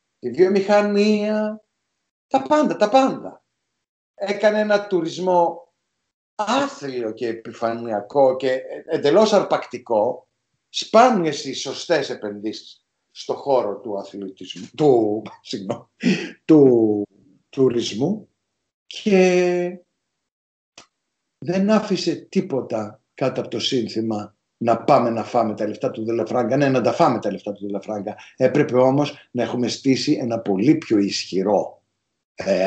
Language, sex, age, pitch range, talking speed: Greek, male, 60-79, 110-170 Hz, 110 wpm